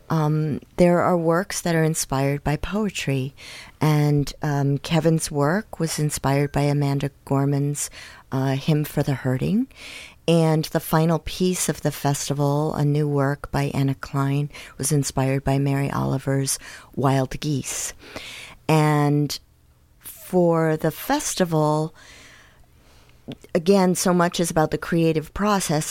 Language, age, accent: English, 50-69, American